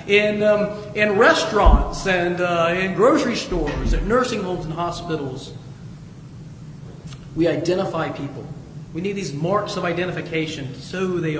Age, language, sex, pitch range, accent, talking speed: 40-59, English, male, 150-210 Hz, American, 130 wpm